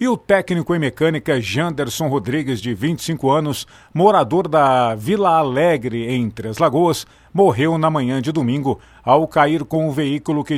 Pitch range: 125-160 Hz